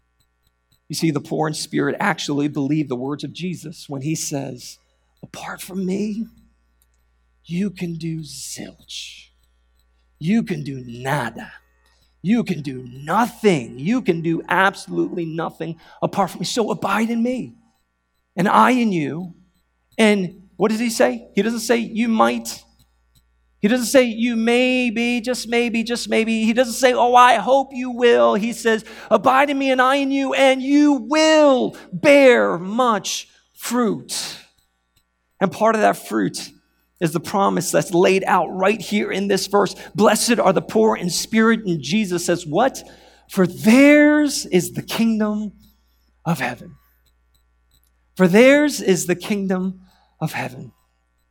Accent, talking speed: American, 150 wpm